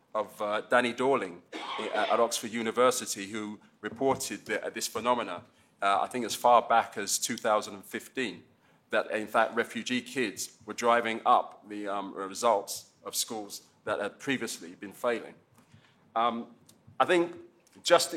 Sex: male